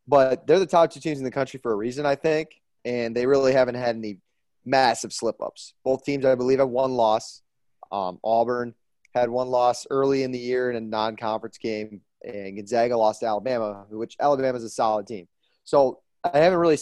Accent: American